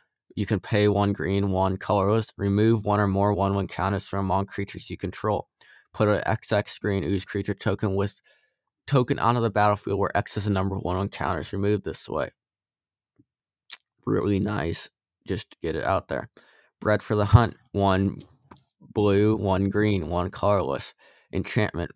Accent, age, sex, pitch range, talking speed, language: American, 20-39, male, 95-105 Hz, 160 wpm, English